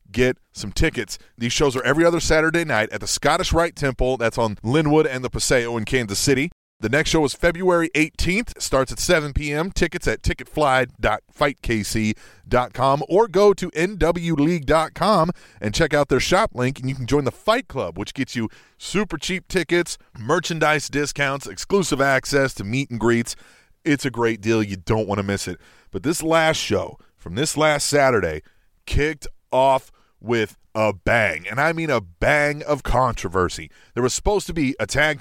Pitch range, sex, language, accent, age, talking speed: 115-155 Hz, male, English, American, 30-49, 175 wpm